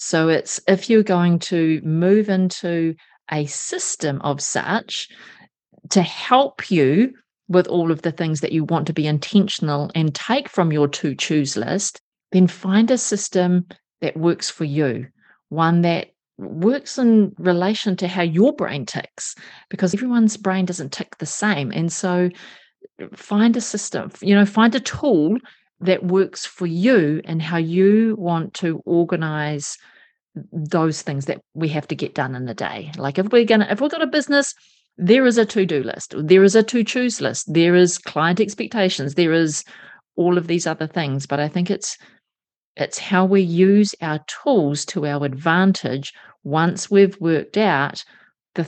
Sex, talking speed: female, 170 wpm